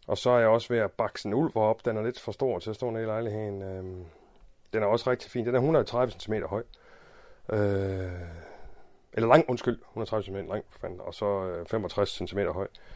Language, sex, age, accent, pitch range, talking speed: Danish, male, 30-49, native, 95-125 Hz, 205 wpm